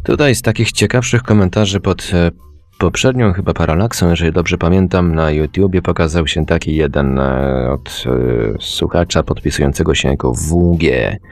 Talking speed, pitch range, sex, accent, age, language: 145 wpm, 80-95 Hz, male, native, 30-49, Polish